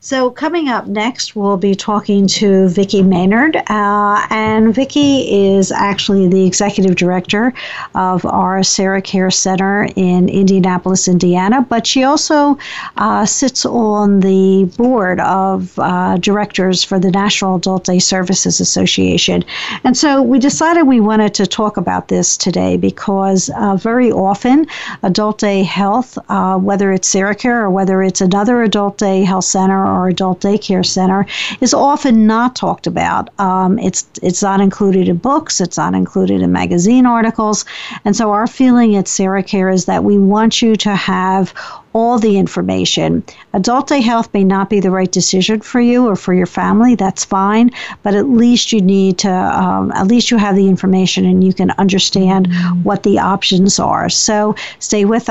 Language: English